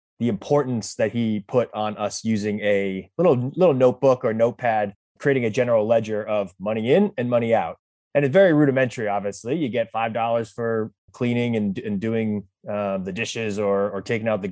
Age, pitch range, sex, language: 20-39, 105-130 Hz, male, English